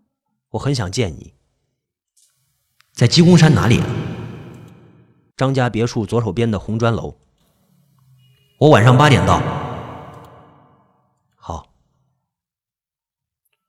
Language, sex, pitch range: Chinese, male, 115-190 Hz